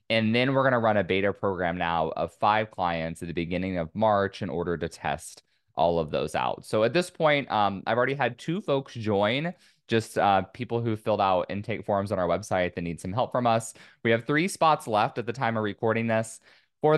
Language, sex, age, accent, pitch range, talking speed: English, male, 20-39, American, 95-125 Hz, 235 wpm